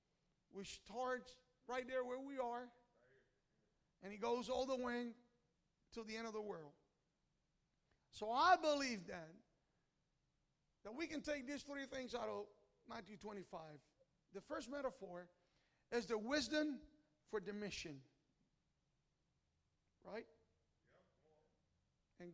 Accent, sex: American, male